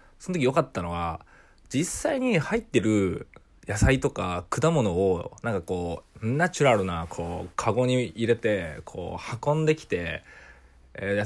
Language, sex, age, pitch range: Japanese, male, 20-39, 95-145 Hz